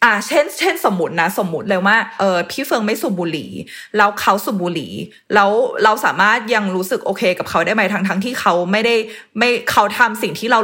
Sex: female